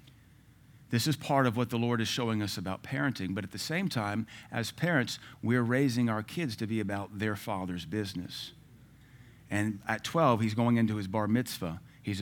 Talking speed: 190 wpm